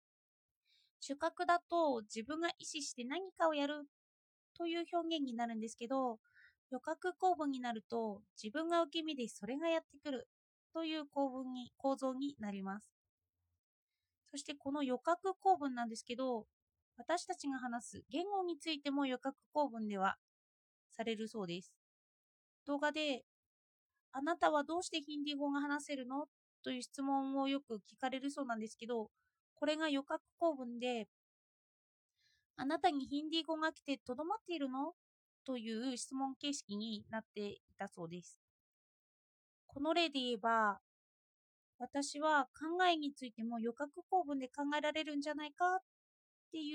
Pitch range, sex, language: 235-315 Hz, female, Japanese